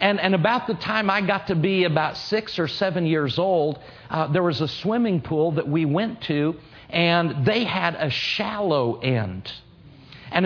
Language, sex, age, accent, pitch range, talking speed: English, male, 50-69, American, 155-200 Hz, 185 wpm